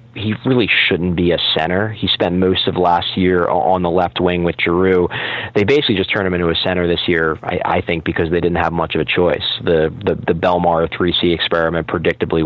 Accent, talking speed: American, 220 wpm